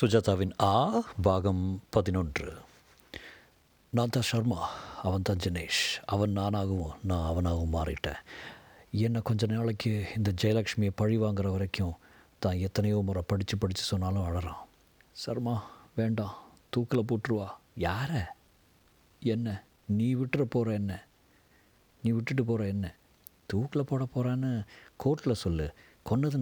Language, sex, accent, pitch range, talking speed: Tamil, male, native, 100-130 Hz, 115 wpm